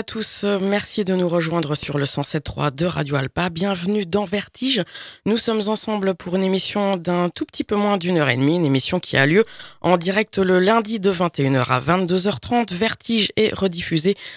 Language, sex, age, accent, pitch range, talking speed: French, female, 20-39, French, 160-205 Hz, 190 wpm